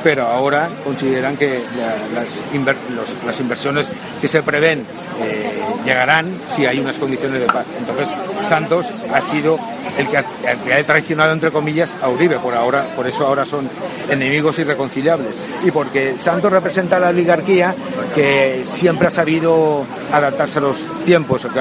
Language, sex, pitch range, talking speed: Spanish, male, 135-160 Hz, 165 wpm